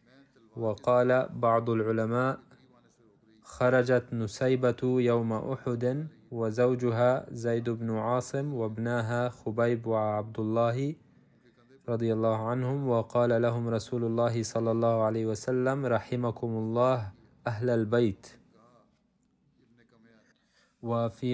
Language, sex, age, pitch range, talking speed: Arabic, male, 20-39, 115-125 Hz, 85 wpm